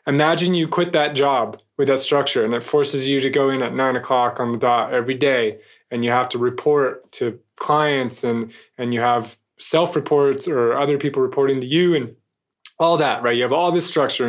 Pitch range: 125-155 Hz